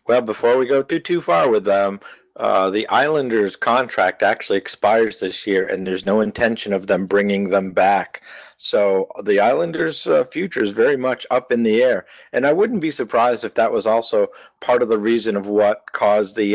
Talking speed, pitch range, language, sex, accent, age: 200 wpm, 100-155 Hz, English, male, American, 50-69